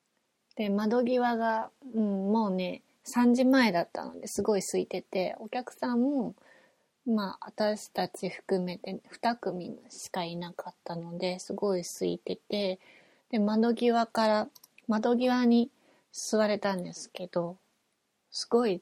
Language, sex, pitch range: Japanese, female, 185-245 Hz